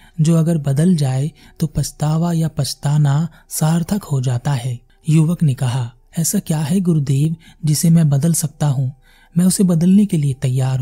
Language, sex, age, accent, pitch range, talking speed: Hindi, male, 30-49, native, 135-165 Hz, 165 wpm